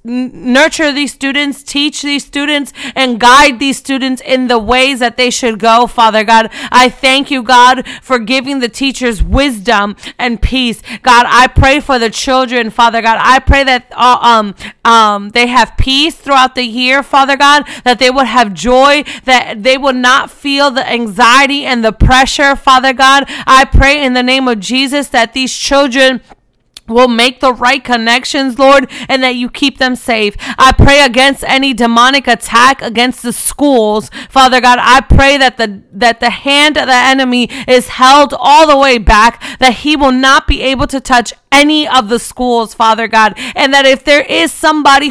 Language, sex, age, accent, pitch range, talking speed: English, female, 30-49, American, 240-280 Hz, 185 wpm